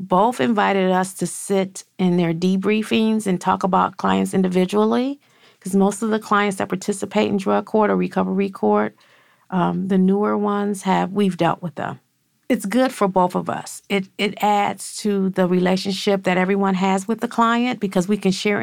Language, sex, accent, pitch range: English, female, American, 180-200 Hz